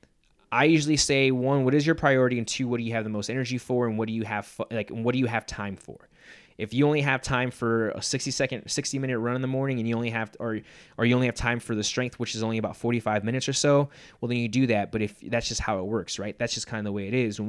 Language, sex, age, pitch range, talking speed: English, male, 20-39, 110-135 Hz, 305 wpm